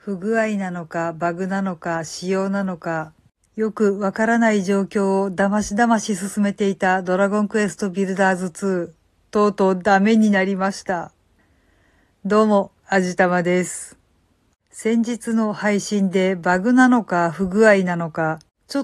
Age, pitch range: 50-69, 190-235 Hz